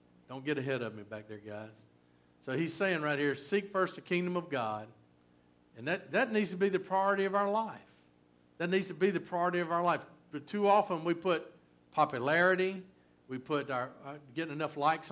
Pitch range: 125-180 Hz